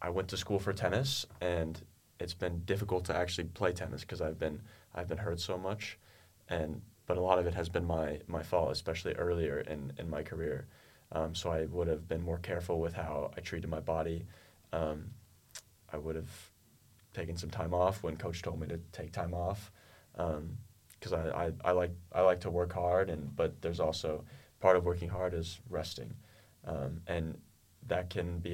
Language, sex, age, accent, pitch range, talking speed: Czech, male, 20-39, American, 85-95 Hz, 200 wpm